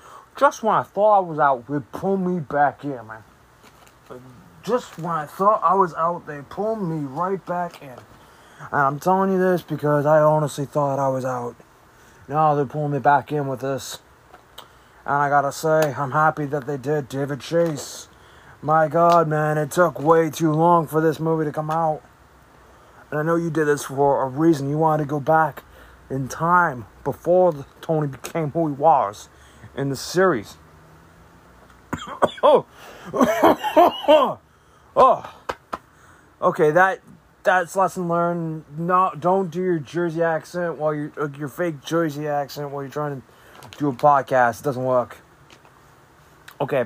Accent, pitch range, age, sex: American, 140-170 Hz, 20-39, male